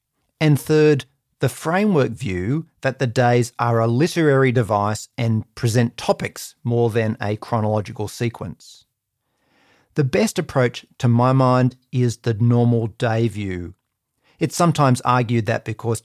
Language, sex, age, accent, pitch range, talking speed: English, male, 40-59, Australian, 115-135 Hz, 135 wpm